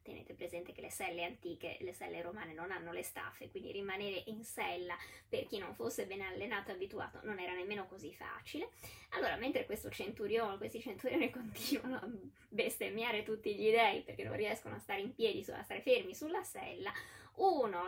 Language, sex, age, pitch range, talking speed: Italian, female, 10-29, 195-295 Hz, 190 wpm